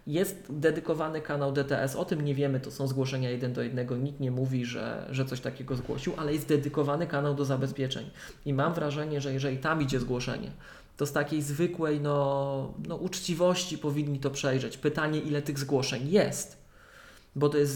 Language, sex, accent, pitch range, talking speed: Polish, male, native, 135-155 Hz, 175 wpm